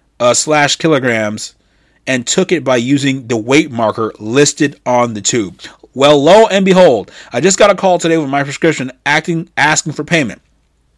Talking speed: 175 wpm